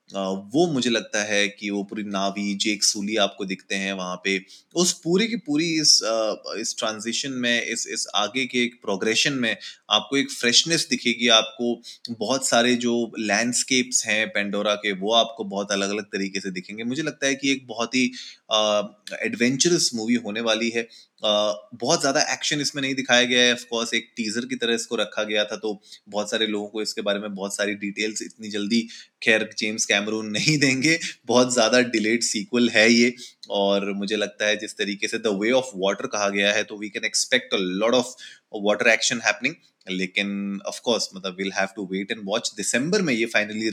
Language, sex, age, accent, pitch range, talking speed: Hindi, male, 20-39, native, 105-125 Hz, 180 wpm